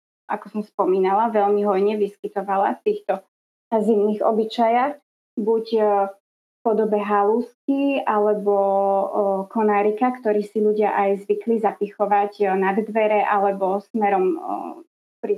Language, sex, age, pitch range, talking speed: Slovak, female, 20-39, 200-230 Hz, 105 wpm